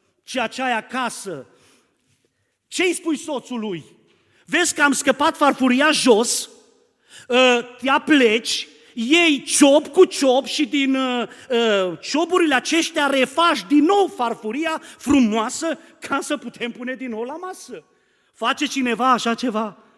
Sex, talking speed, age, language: male, 120 wpm, 40-59, Romanian